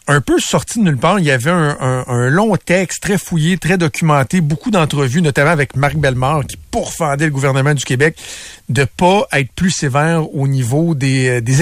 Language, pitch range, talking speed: French, 135-175 Hz, 200 wpm